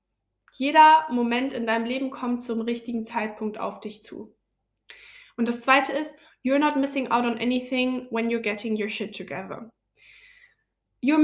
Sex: female